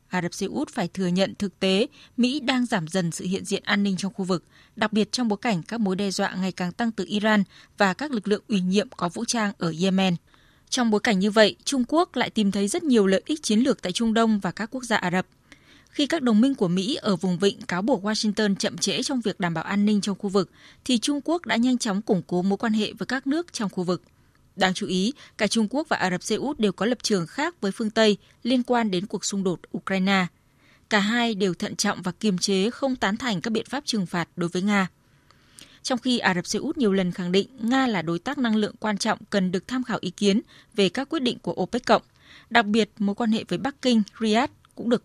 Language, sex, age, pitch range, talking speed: Vietnamese, female, 20-39, 190-235 Hz, 265 wpm